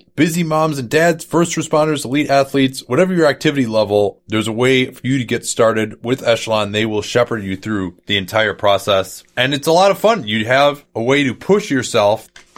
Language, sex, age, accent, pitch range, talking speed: English, male, 30-49, American, 105-140 Hz, 205 wpm